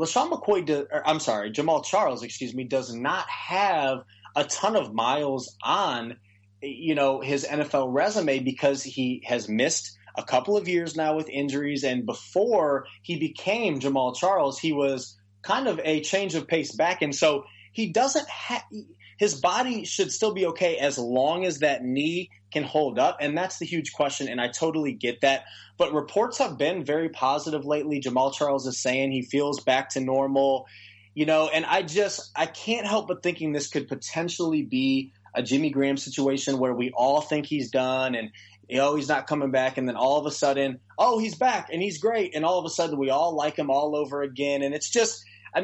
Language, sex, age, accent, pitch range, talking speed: English, male, 30-49, American, 130-165 Hz, 200 wpm